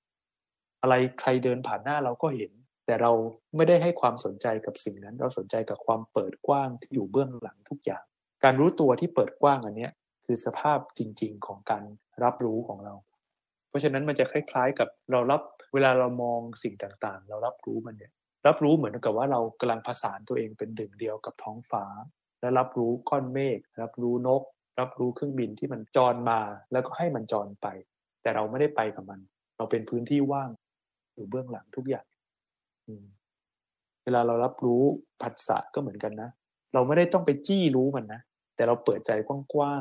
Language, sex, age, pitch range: Thai, male, 20-39, 110-140 Hz